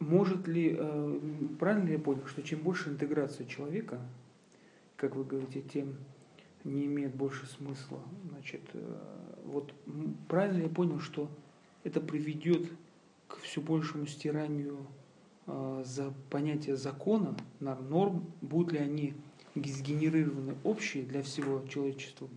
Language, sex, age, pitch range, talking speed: Russian, male, 40-59, 140-160 Hz, 120 wpm